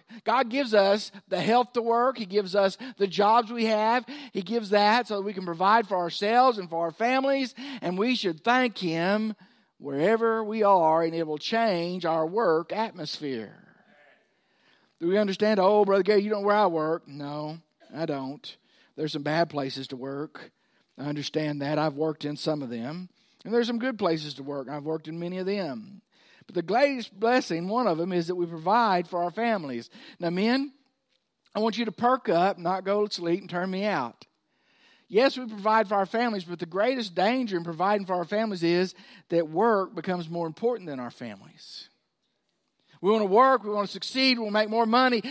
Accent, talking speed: American, 200 wpm